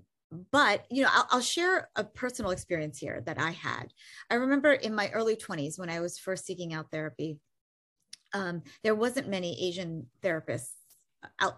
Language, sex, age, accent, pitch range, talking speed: English, female, 30-49, American, 175-220 Hz, 170 wpm